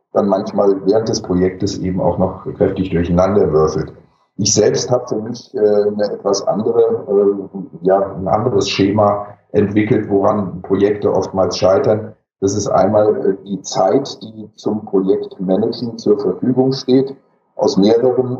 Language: German